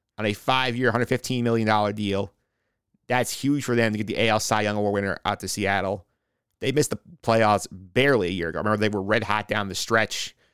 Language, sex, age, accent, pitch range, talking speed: English, male, 30-49, American, 105-120 Hz, 210 wpm